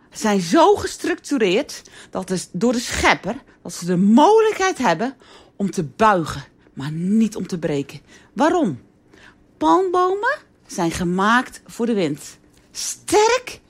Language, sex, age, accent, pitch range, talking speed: Dutch, female, 40-59, Dutch, 175-295 Hz, 125 wpm